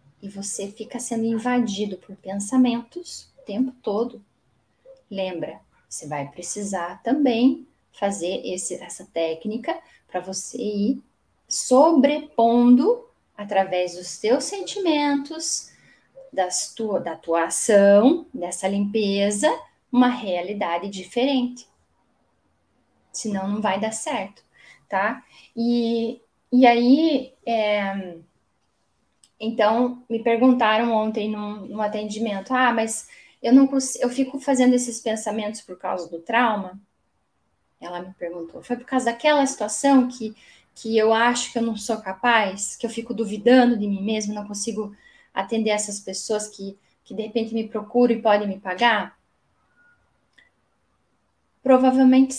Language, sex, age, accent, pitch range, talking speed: Portuguese, female, 10-29, Brazilian, 200-250 Hz, 120 wpm